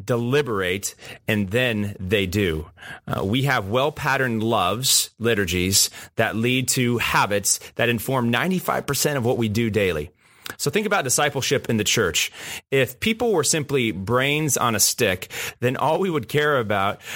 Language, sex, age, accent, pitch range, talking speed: English, male, 30-49, American, 110-150 Hz, 155 wpm